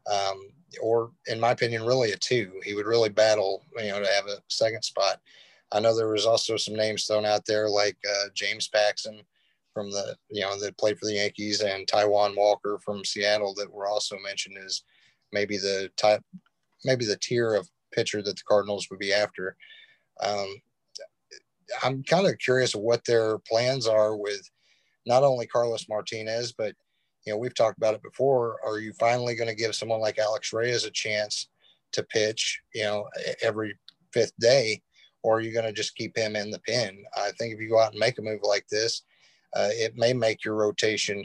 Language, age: English, 30-49